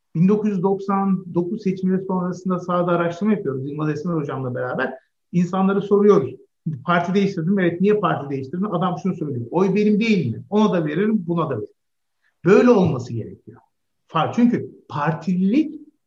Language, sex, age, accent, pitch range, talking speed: Turkish, male, 50-69, native, 155-210 Hz, 140 wpm